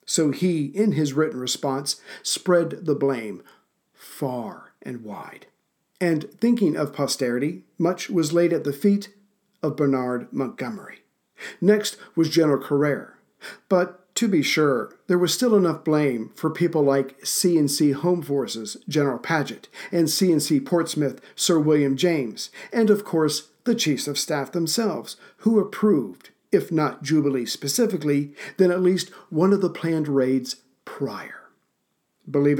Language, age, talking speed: English, 50-69, 140 wpm